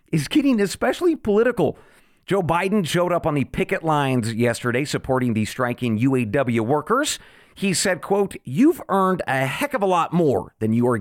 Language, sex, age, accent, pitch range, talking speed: English, male, 40-59, American, 125-185 Hz, 175 wpm